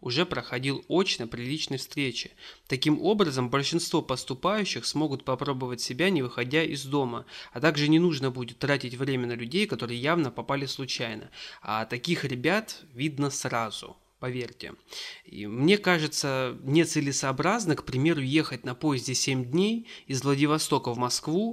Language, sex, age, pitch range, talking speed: Russian, male, 30-49, 130-160 Hz, 140 wpm